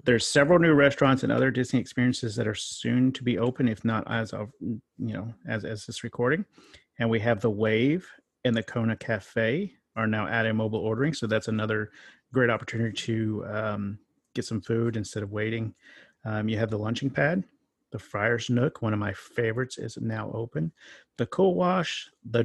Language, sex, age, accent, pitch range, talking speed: English, male, 40-59, American, 110-125 Hz, 190 wpm